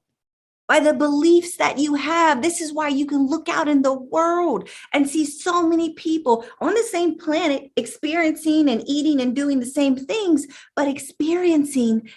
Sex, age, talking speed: female, 30-49, 175 wpm